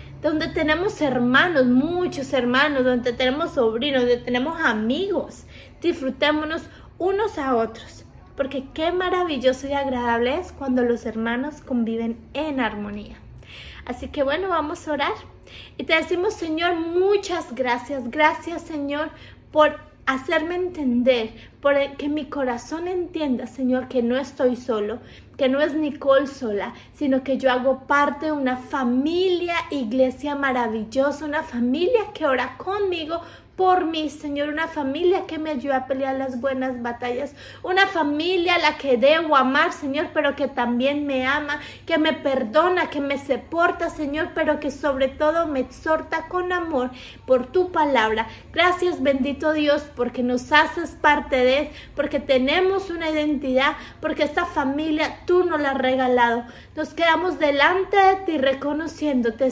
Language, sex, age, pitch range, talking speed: Spanish, female, 30-49, 260-320 Hz, 145 wpm